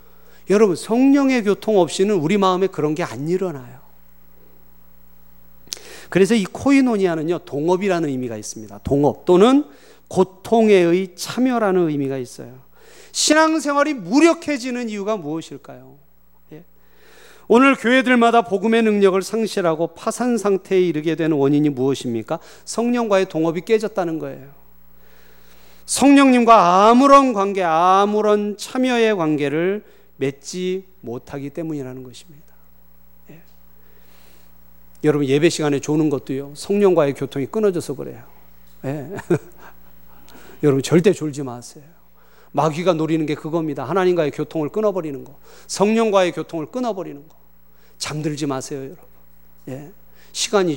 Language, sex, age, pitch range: Korean, male, 40-59, 135-200 Hz